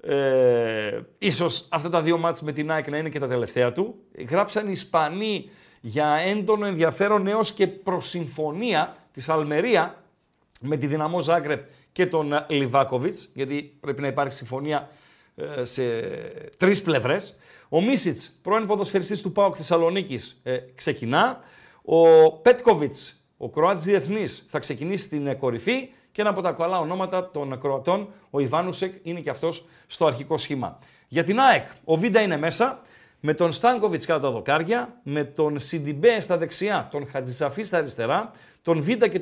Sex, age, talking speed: male, 40-59, 155 wpm